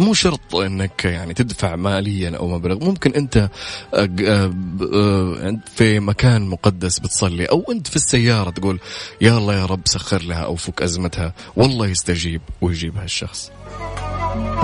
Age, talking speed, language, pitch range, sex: 30-49, 130 wpm, English, 90-105 Hz, male